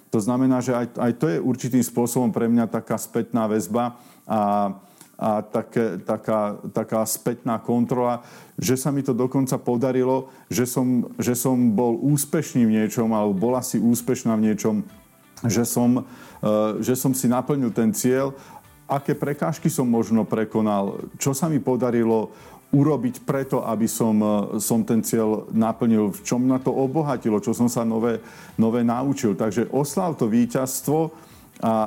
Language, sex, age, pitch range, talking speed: Slovak, male, 40-59, 115-130 Hz, 155 wpm